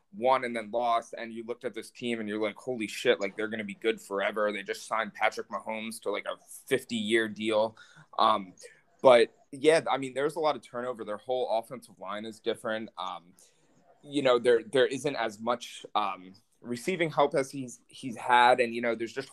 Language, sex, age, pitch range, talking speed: English, male, 20-39, 110-140 Hz, 215 wpm